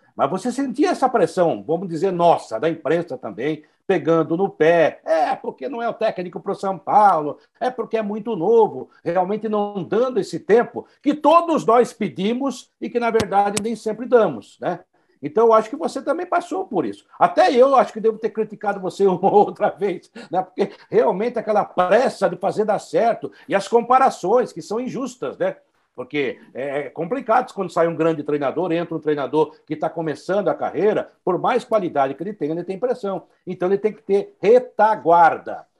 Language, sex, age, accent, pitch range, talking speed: Portuguese, male, 60-79, Brazilian, 170-235 Hz, 190 wpm